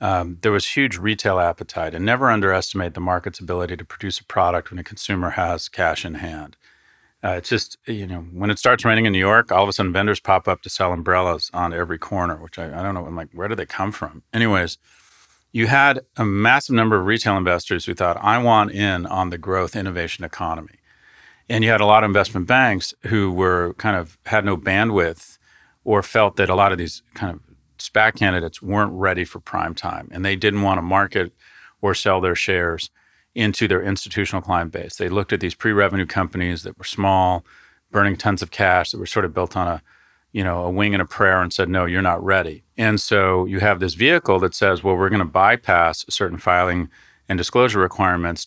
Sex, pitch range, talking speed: male, 90-105 Hz, 215 wpm